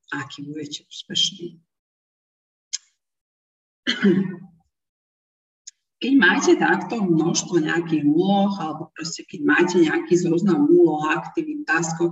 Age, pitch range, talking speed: 40-59, 160-190 Hz, 90 wpm